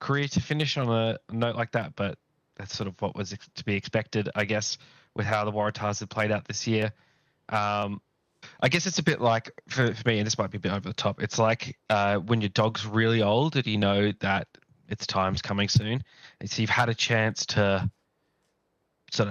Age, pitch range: 20-39, 100-120 Hz